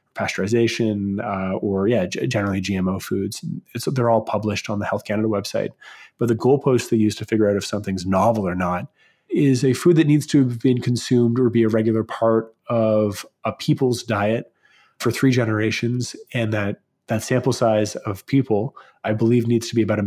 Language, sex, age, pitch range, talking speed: English, male, 30-49, 100-120 Hz, 195 wpm